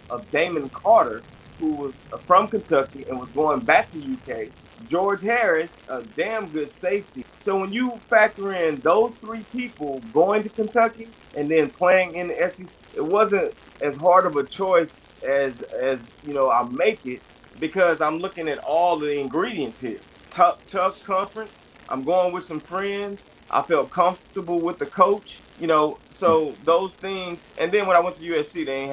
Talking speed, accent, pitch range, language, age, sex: 180 wpm, American, 155-225 Hz, English, 30-49, male